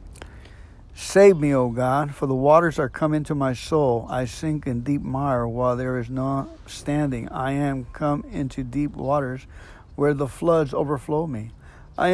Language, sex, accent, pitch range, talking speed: English, male, American, 120-150 Hz, 170 wpm